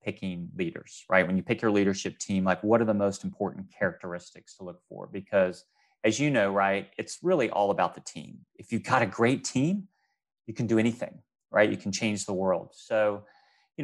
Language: English